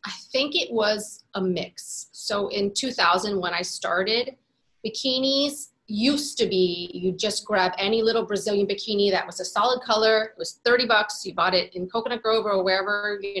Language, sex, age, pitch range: English, female, 30-49, 175-210 Hz